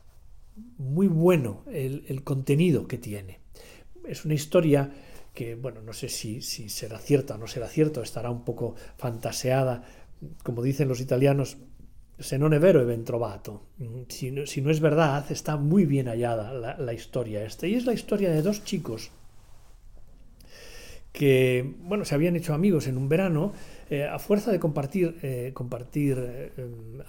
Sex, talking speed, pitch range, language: male, 160 wpm, 120-155 Hz, Spanish